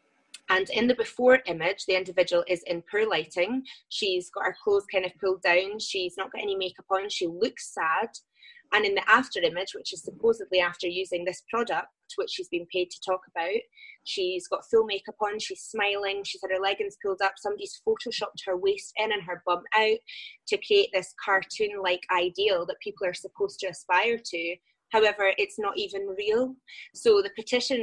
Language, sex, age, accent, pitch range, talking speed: English, female, 20-39, British, 180-240 Hz, 190 wpm